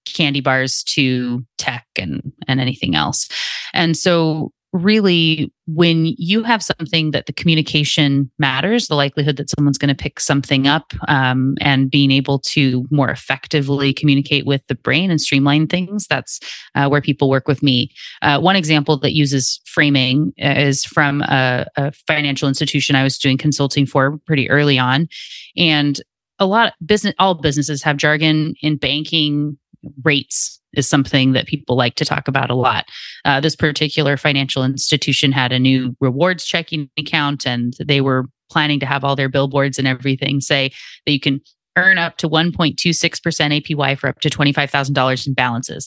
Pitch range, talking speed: 135-155 Hz, 165 wpm